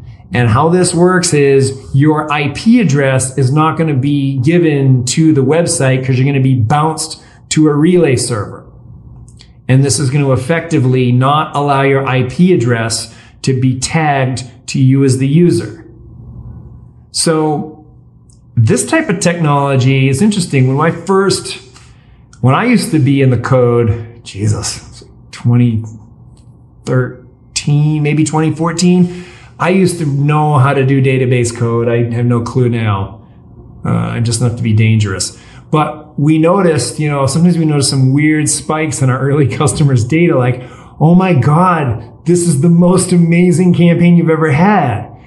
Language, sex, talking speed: English, male, 155 wpm